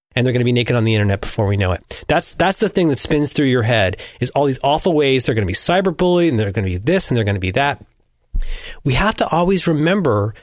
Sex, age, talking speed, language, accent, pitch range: male, 30-49, 280 wpm, English, American, 110-165 Hz